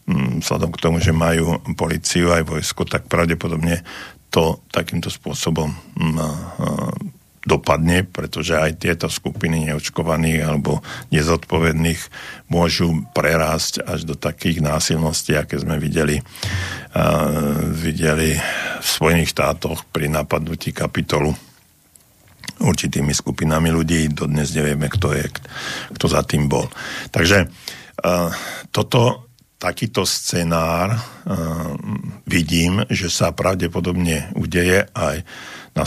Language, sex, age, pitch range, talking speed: Slovak, male, 50-69, 80-85 Hz, 100 wpm